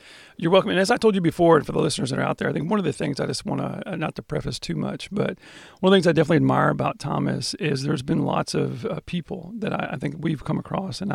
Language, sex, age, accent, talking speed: English, male, 40-59, American, 300 wpm